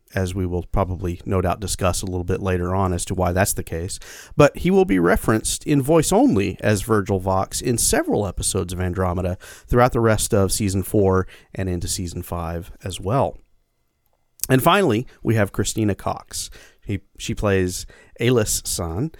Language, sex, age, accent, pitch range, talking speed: English, male, 40-59, American, 95-125 Hz, 180 wpm